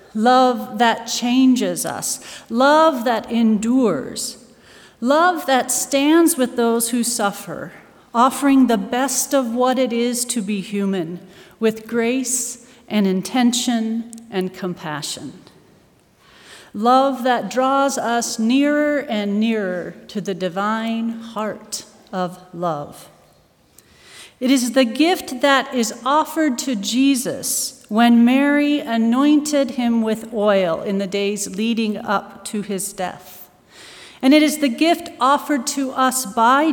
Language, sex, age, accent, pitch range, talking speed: English, female, 40-59, American, 210-260 Hz, 125 wpm